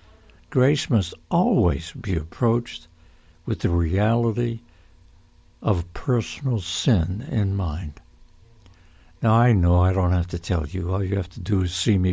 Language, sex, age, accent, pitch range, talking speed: English, male, 60-79, American, 85-105 Hz, 150 wpm